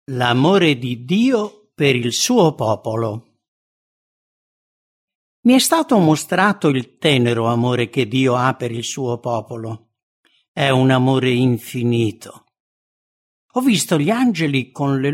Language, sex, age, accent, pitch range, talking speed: English, male, 60-79, Italian, 120-175 Hz, 125 wpm